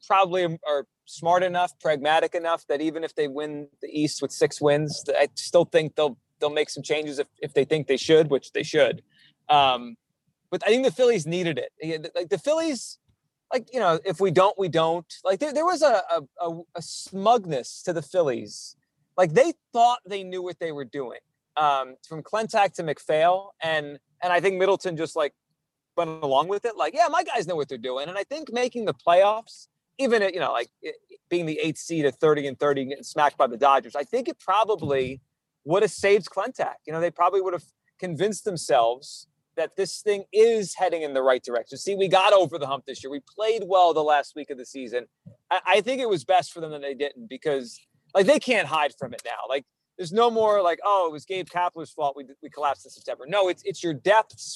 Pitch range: 145-195 Hz